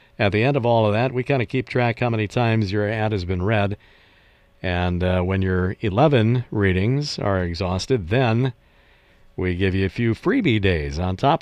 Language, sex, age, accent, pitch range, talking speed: English, male, 50-69, American, 85-110 Hz, 200 wpm